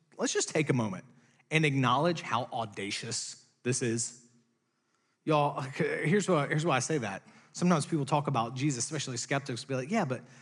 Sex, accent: male, American